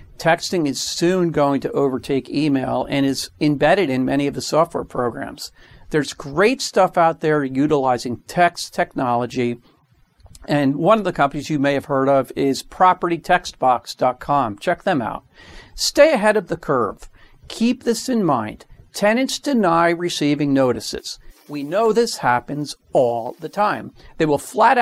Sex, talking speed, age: male, 150 wpm, 50-69